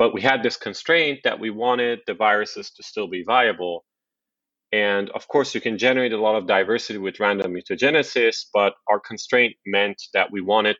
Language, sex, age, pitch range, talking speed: English, male, 30-49, 105-135 Hz, 190 wpm